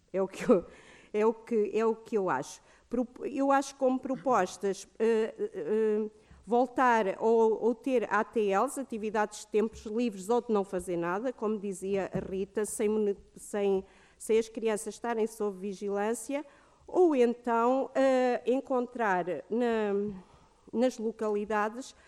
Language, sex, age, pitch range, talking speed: Portuguese, female, 50-69, 200-235 Hz, 120 wpm